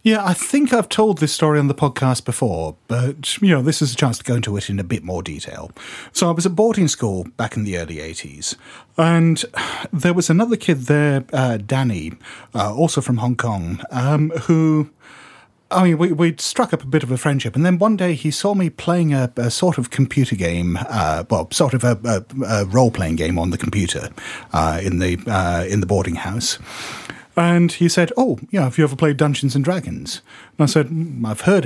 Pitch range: 115-170 Hz